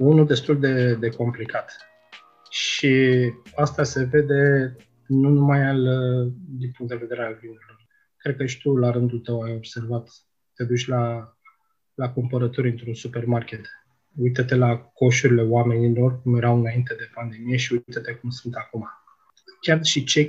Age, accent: 20-39, native